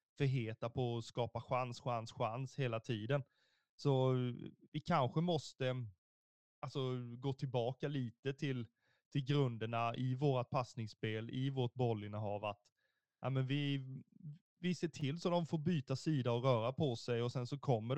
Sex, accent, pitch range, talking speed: male, native, 120-150 Hz, 155 wpm